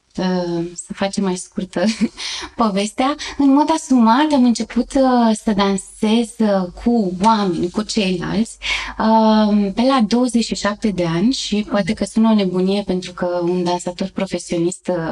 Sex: female